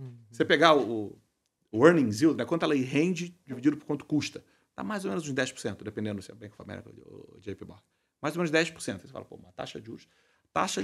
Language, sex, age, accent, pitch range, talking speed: Portuguese, male, 40-59, Brazilian, 105-160 Hz, 225 wpm